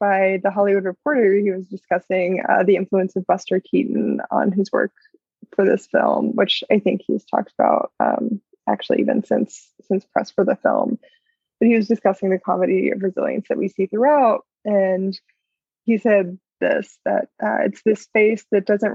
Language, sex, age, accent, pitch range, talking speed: English, female, 20-39, American, 190-230 Hz, 180 wpm